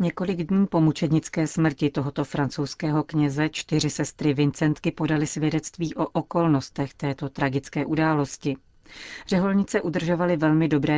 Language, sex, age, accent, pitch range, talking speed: Czech, female, 40-59, native, 145-165 Hz, 120 wpm